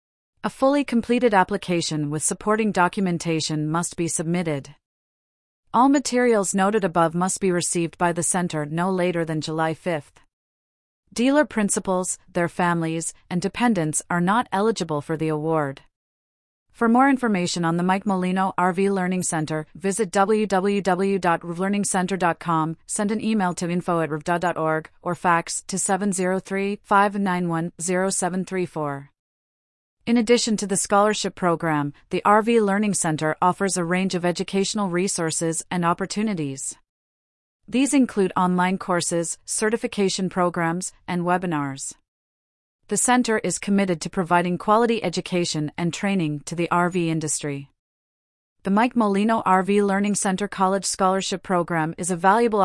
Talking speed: 130 wpm